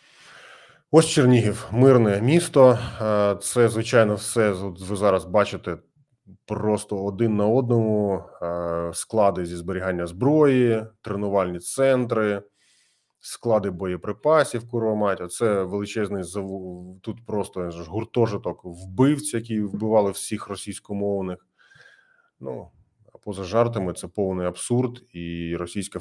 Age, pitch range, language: 20-39, 90-120 Hz, Ukrainian